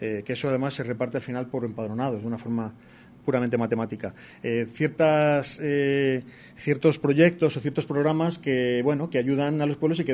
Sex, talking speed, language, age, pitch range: male, 180 wpm, Spanish, 40-59, 125-155 Hz